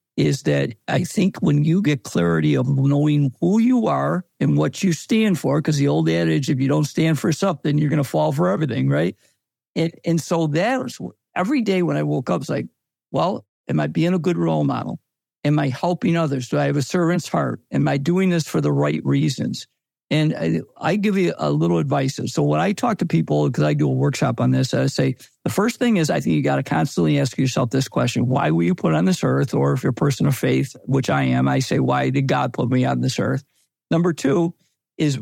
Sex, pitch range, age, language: male, 120-175 Hz, 50-69, English